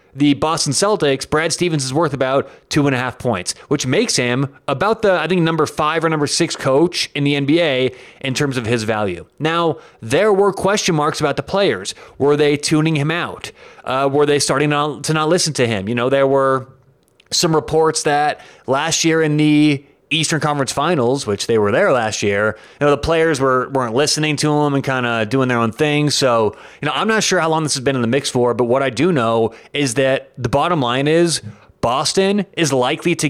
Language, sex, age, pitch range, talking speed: English, male, 30-49, 130-165 Hz, 225 wpm